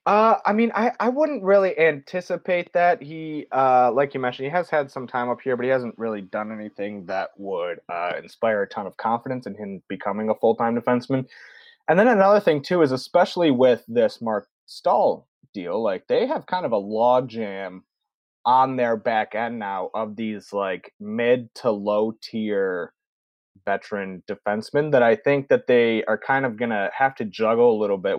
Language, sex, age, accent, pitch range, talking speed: English, male, 20-39, American, 110-175 Hz, 185 wpm